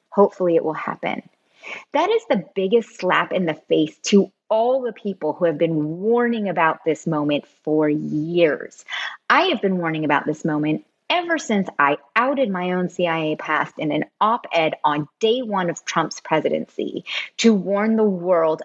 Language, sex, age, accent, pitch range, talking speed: English, female, 30-49, American, 160-220 Hz, 170 wpm